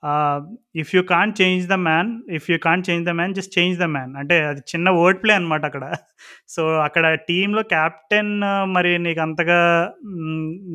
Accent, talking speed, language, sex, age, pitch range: native, 195 wpm, Telugu, male, 20-39, 155-180 Hz